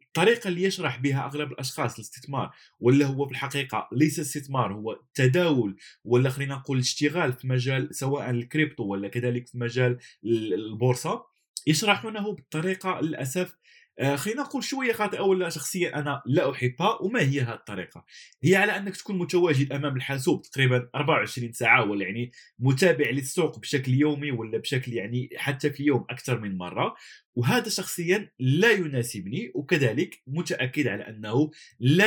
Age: 20-39